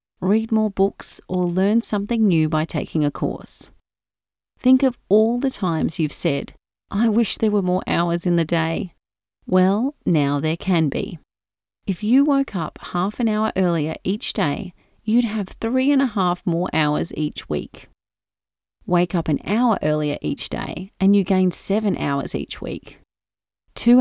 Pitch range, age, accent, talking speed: 160-220 Hz, 30-49, Australian, 165 wpm